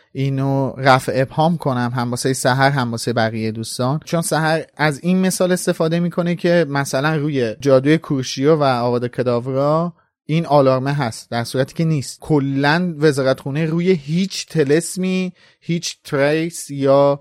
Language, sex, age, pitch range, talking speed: Persian, male, 30-49, 135-165 Hz, 145 wpm